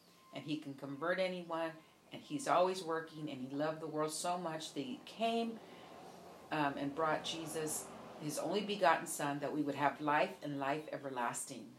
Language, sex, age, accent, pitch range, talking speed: English, female, 50-69, American, 165-215 Hz, 180 wpm